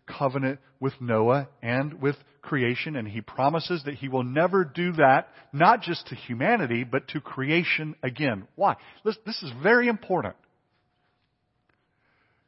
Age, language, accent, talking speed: 50-69, English, American, 140 wpm